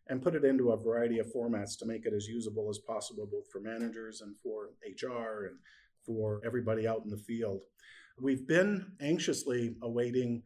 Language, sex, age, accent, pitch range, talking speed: English, male, 50-69, American, 115-135 Hz, 185 wpm